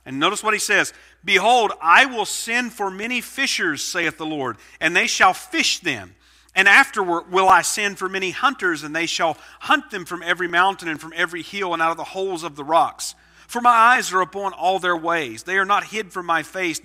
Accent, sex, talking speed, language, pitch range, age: American, male, 225 wpm, English, 140-185 Hz, 50-69